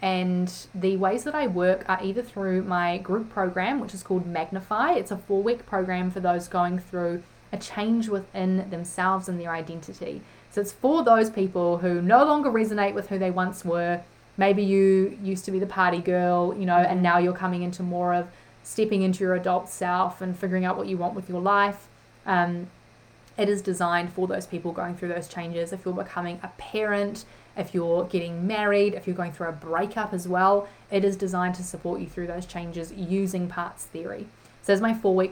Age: 20-39